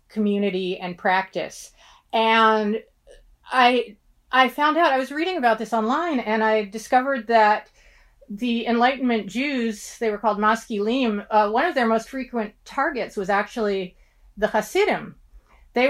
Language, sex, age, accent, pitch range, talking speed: English, female, 40-59, American, 205-255 Hz, 140 wpm